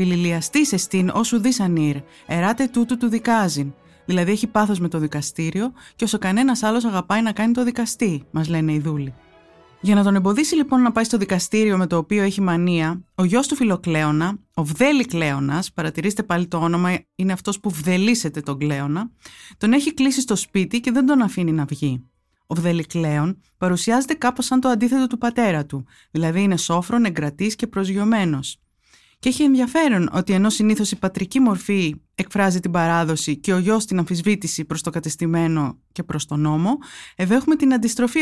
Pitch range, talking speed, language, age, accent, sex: 165-235 Hz, 175 wpm, Greek, 20-39, native, female